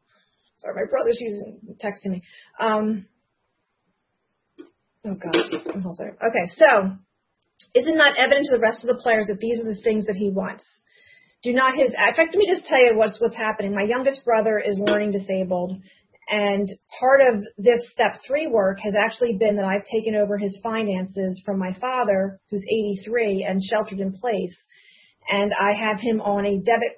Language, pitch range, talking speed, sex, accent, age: English, 195-230 Hz, 185 wpm, female, American, 40-59